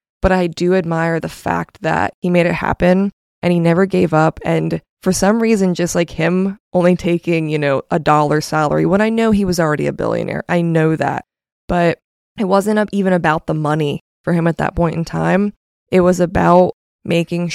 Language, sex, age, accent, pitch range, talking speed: English, female, 20-39, American, 165-190 Hz, 200 wpm